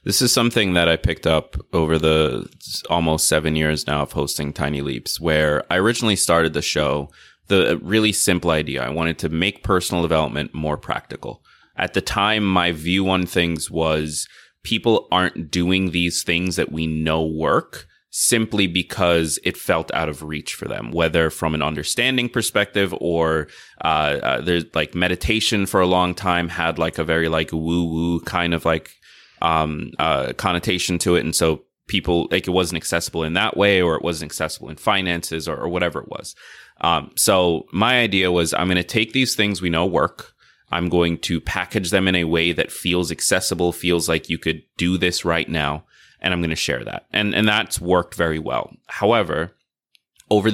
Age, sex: 30-49, male